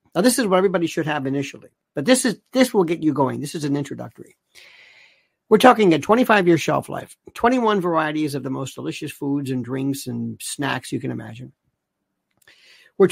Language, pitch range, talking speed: English, 140-200 Hz, 190 wpm